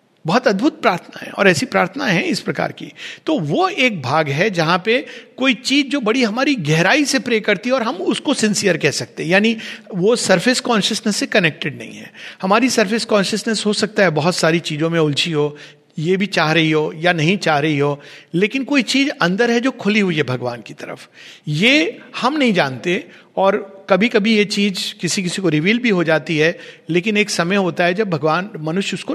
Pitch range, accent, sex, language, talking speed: 155-220 Hz, native, male, Hindi, 210 wpm